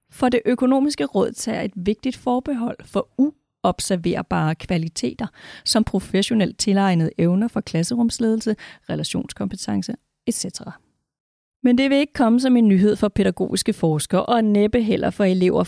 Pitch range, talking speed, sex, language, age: 180-230 Hz, 135 wpm, female, Danish, 30-49